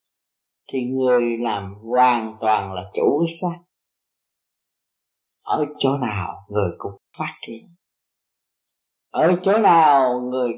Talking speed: 110 wpm